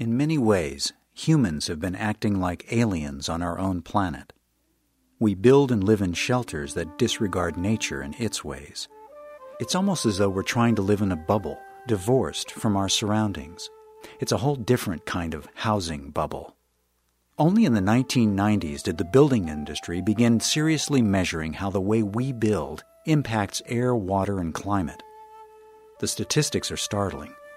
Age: 50-69